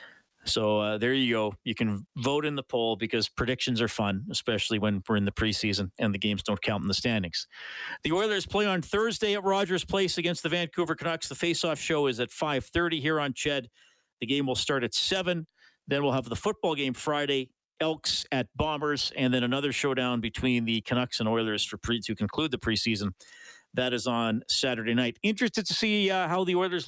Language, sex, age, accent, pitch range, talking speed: English, male, 40-59, American, 120-175 Hz, 210 wpm